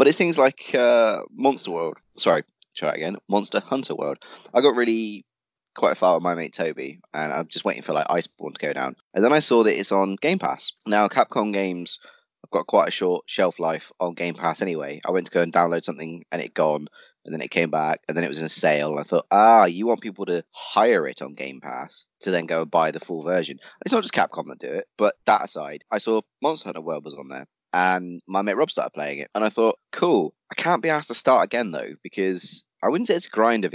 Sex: male